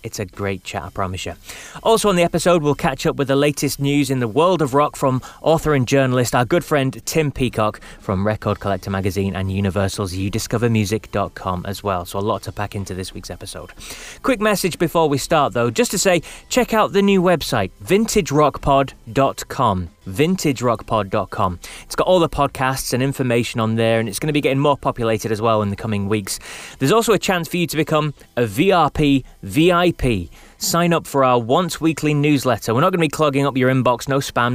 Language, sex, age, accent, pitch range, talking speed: English, male, 20-39, British, 110-155 Hz, 205 wpm